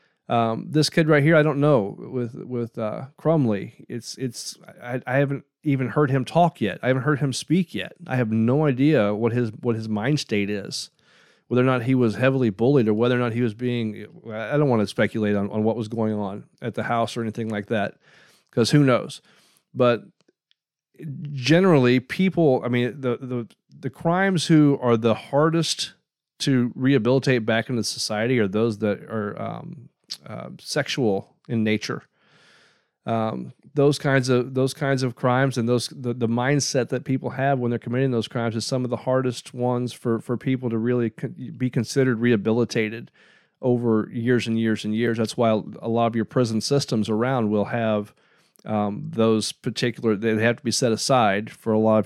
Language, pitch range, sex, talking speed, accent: English, 110-135 Hz, male, 190 wpm, American